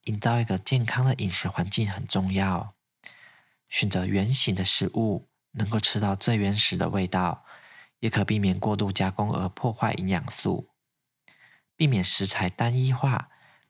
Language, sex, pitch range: Chinese, male, 100-125 Hz